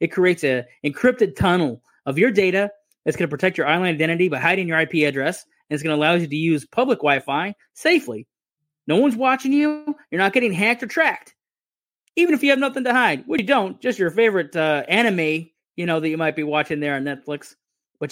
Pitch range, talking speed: 160-230 Hz, 220 wpm